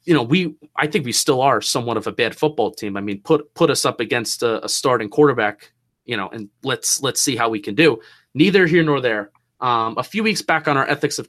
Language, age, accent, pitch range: English, 30-49, American, 115-160 Hz